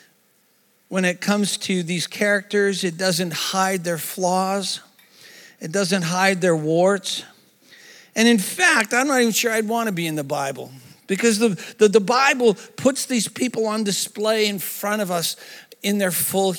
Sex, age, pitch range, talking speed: male, 50-69, 175-230 Hz, 170 wpm